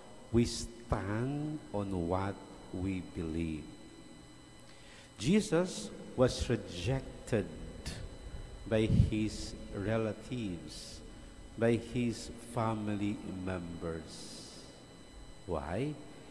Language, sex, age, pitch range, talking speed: English, male, 50-69, 100-135 Hz, 65 wpm